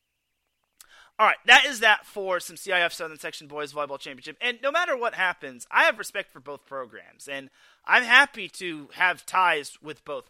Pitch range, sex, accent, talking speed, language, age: 135-195 Hz, male, American, 185 wpm, English, 30-49